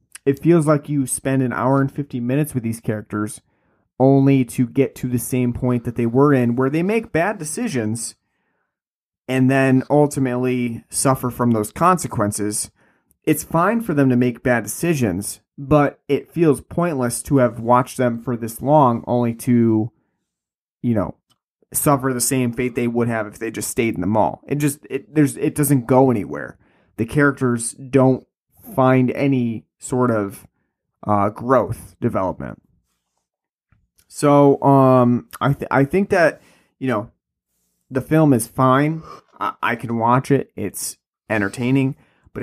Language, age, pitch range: English, 30-49, 115-140 Hz